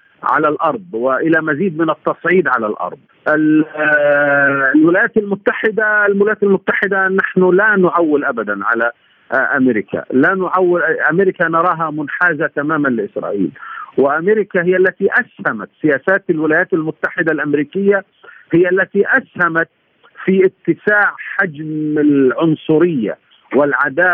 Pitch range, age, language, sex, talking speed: 145-185 Hz, 50-69, Arabic, male, 100 wpm